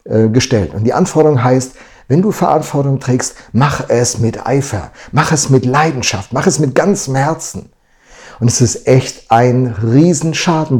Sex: male